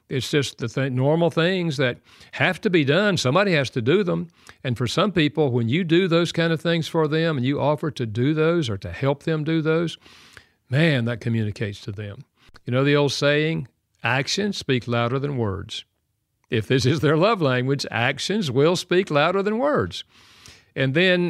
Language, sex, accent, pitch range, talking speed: English, male, American, 115-160 Hz, 195 wpm